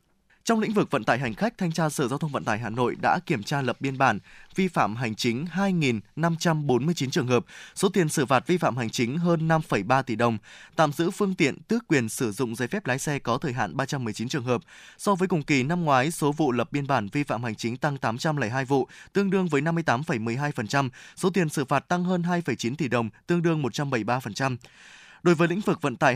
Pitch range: 120-160 Hz